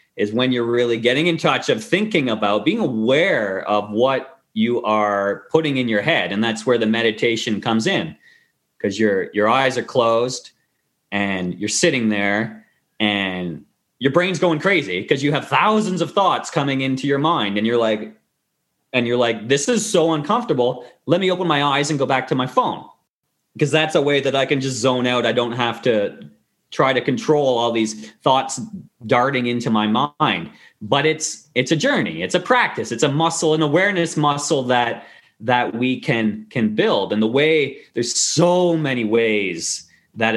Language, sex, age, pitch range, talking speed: English, male, 30-49, 110-150 Hz, 185 wpm